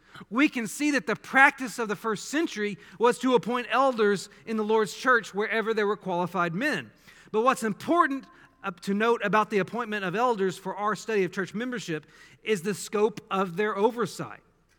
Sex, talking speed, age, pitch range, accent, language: male, 185 wpm, 40-59, 185-240 Hz, American, English